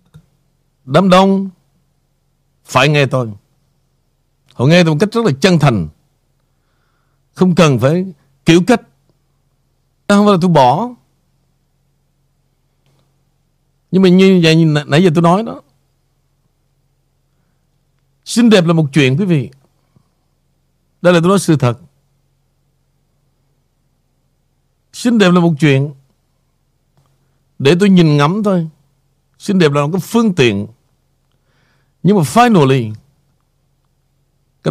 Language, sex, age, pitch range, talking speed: Vietnamese, male, 60-79, 135-170 Hz, 120 wpm